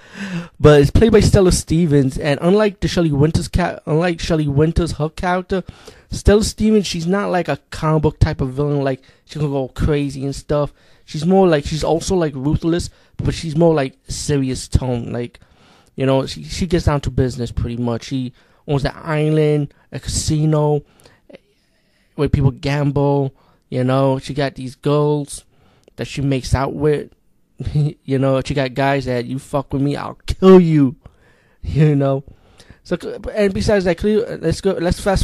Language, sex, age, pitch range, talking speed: English, male, 20-39, 130-155 Hz, 175 wpm